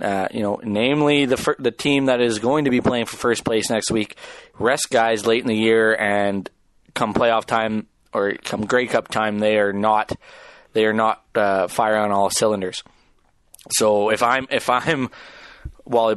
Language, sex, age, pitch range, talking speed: English, male, 20-39, 105-120 Hz, 190 wpm